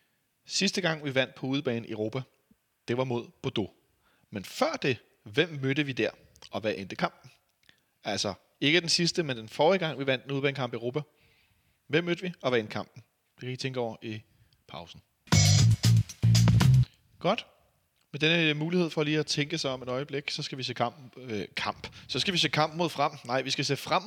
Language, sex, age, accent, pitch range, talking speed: Danish, male, 30-49, native, 110-150 Hz, 205 wpm